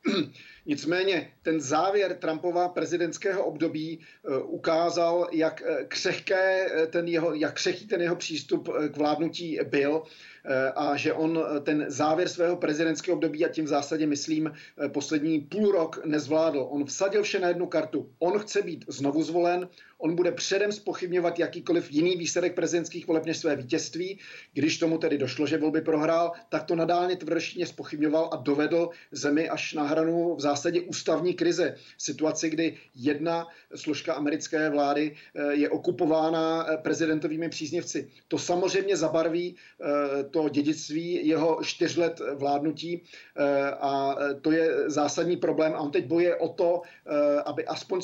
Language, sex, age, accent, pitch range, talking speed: Czech, male, 40-59, native, 150-175 Hz, 135 wpm